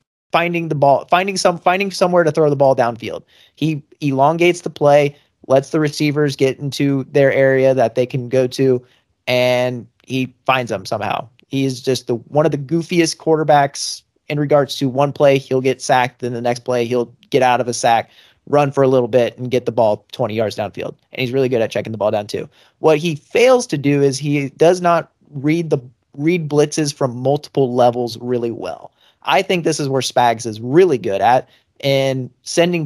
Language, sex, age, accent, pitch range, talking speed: English, male, 30-49, American, 125-150 Hz, 205 wpm